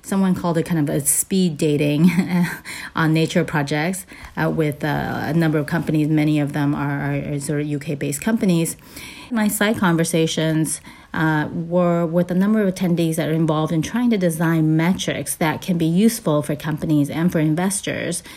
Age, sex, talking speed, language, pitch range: 30-49, female, 185 wpm, English, 145-170 Hz